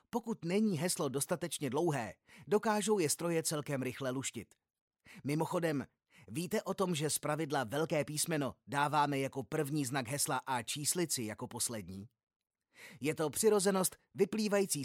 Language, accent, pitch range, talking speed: Czech, native, 135-170 Hz, 135 wpm